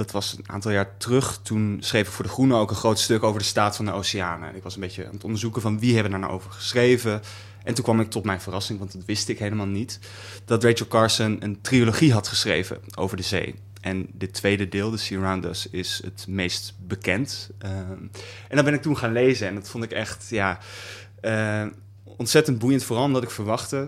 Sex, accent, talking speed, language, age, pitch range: male, Dutch, 235 wpm, Dutch, 20-39, 100-115 Hz